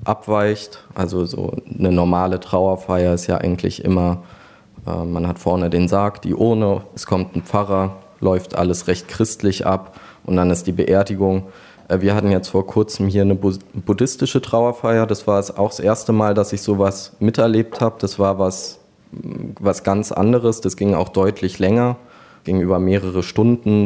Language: German